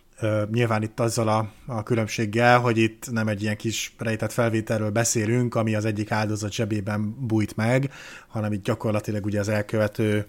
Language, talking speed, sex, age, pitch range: Hungarian, 155 wpm, male, 30-49, 110-125 Hz